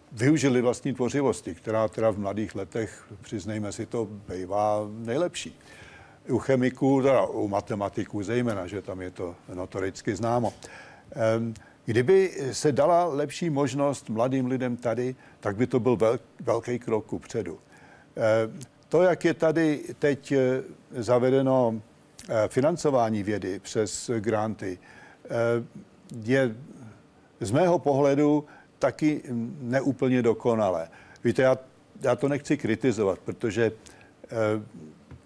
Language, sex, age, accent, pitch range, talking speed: Czech, male, 60-79, native, 110-135 Hz, 110 wpm